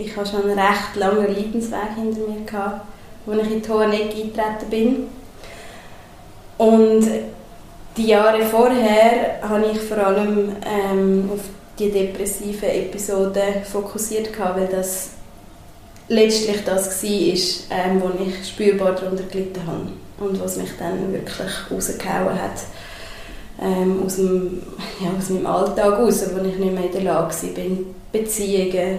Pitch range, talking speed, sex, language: 185-210 Hz, 135 wpm, female, German